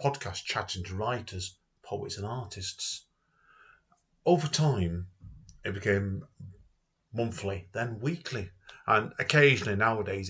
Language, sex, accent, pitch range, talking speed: English, male, British, 95-115 Hz, 100 wpm